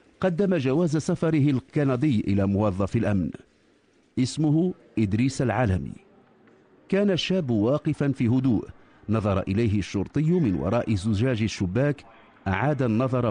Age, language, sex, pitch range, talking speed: 50-69, English, male, 105-150 Hz, 110 wpm